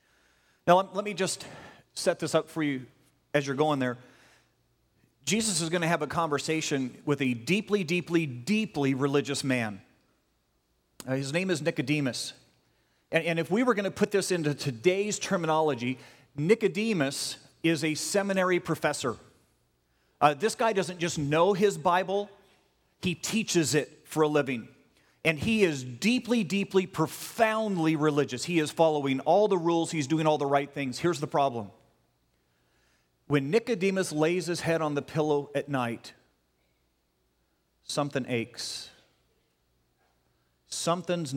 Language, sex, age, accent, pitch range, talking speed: English, male, 40-59, American, 115-180 Hz, 140 wpm